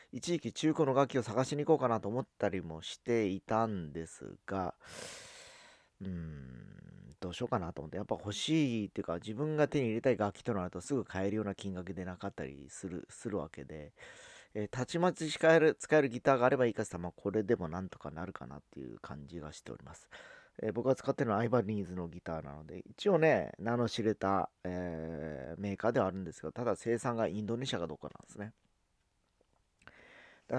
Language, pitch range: Japanese, 90-125 Hz